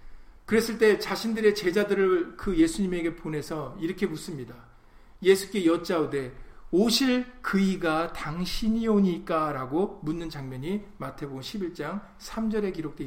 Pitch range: 155-210 Hz